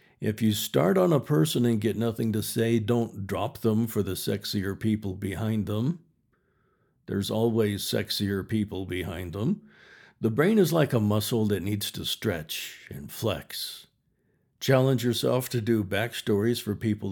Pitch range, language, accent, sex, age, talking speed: 100-125 Hz, English, American, male, 60-79, 160 wpm